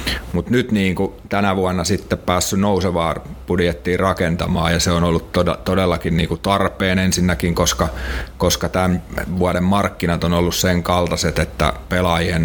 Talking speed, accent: 135 wpm, native